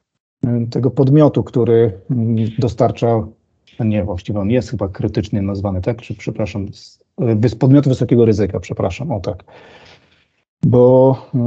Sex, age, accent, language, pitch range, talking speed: male, 40-59, native, Polish, 115-140 Hz, 115 wpm